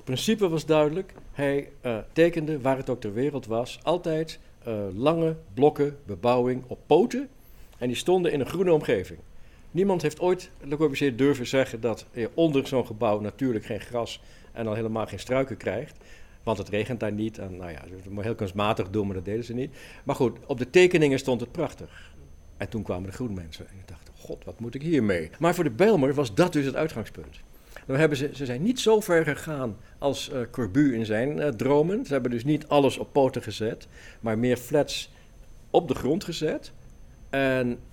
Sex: male